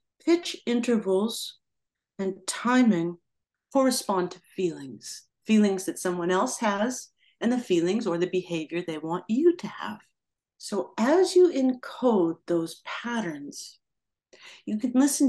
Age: 50-69